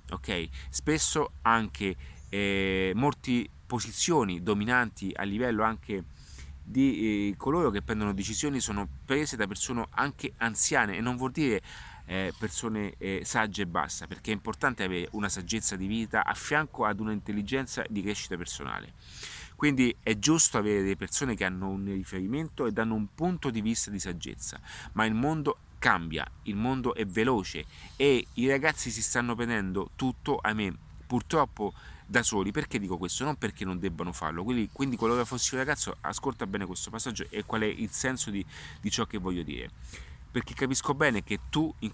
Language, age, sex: Italian, 30-49, male